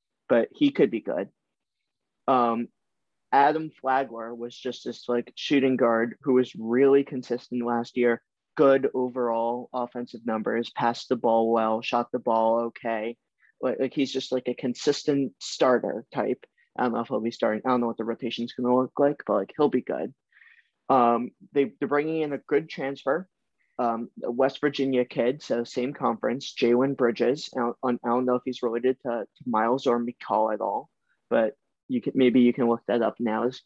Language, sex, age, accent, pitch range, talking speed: English, male, 20-39, American, 120-135 Hz, 185 wpm